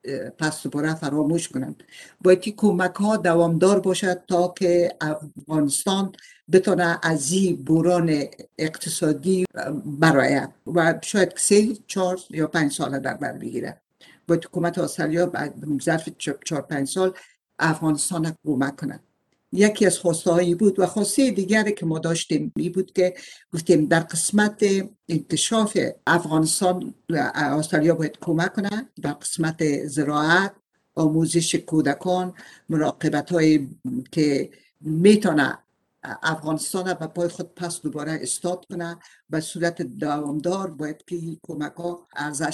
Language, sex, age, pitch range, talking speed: Persian, female, 60-79, 155-185 Hz, 120 wpm